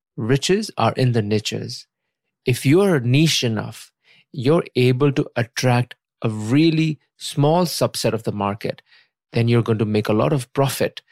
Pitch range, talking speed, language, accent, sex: 115-145 Hz, 155 wpm, English, Indian, male